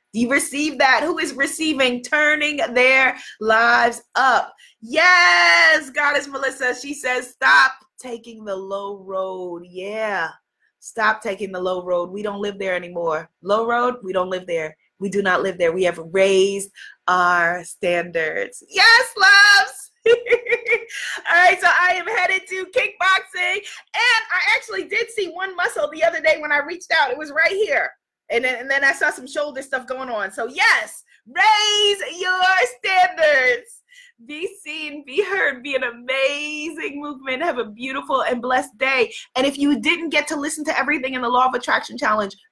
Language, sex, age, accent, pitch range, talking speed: English, female, 20-39, American, 225-350 Hz, 170 wpm